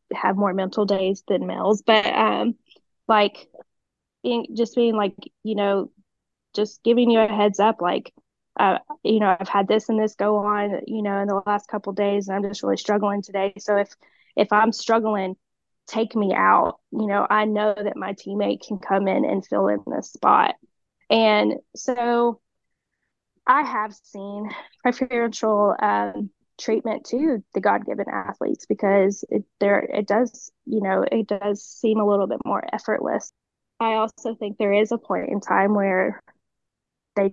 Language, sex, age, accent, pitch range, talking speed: English, female, 10-29, American, 200-225 Hz, 170 wpm